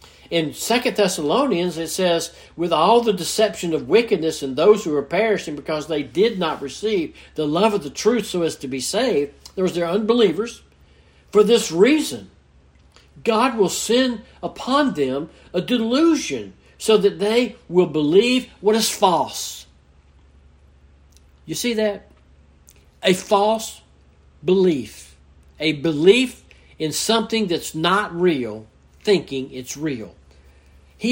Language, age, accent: English, 60-79, American